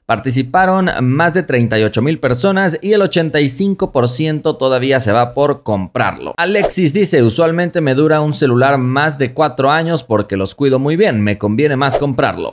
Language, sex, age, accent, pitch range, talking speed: Spanish, male, 30-49, Mexican, 115-175 Hz, 165 wpm